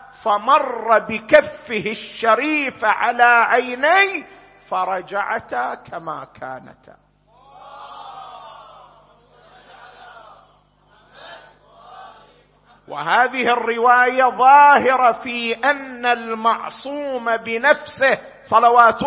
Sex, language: male, Arabic